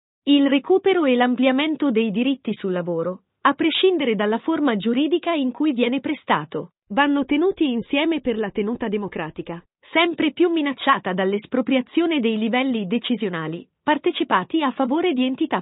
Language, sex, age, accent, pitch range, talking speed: Italian, female, 40-59, native, 225-295 Hz, 140 wpm